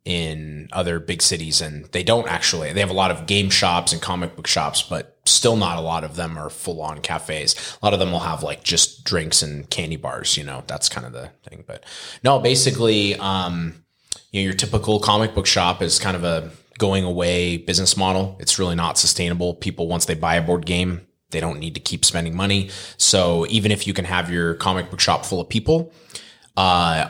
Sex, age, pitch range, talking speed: male, 20-39, 85-100 Hz, 215 wpm